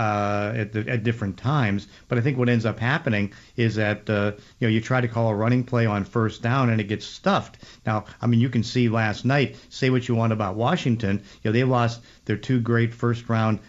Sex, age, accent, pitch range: male, 50-69, American, 110-125 Hz